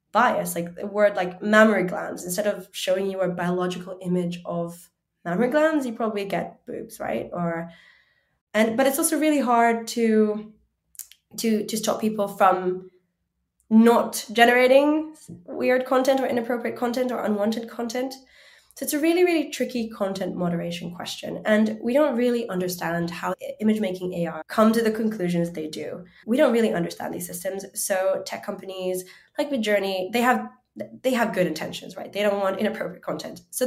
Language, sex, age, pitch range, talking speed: English, female, 10-29, 180-240 Hz, 165 wpm